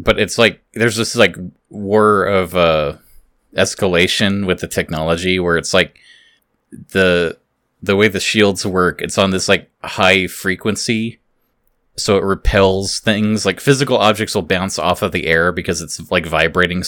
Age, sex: 20-39, male